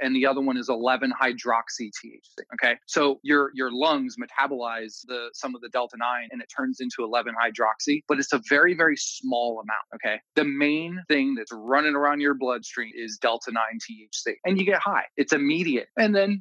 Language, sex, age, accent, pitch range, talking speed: English, male, 20-39, American, 120-145 Hz, 190 wpm